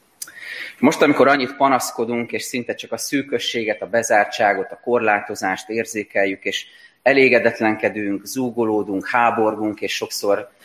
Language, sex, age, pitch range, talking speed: Hungarian, male, 30-49, 95-115 Hz, 115 wpm